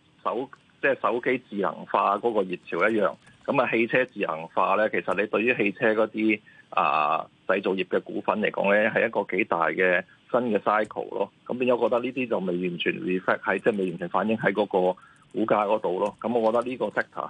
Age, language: 20-39, Chinese